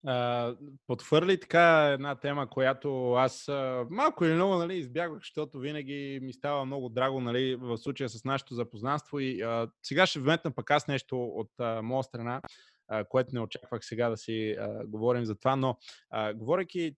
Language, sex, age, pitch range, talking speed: Bulgarian, male, 20-39, 120-145 Hz, 170 wpm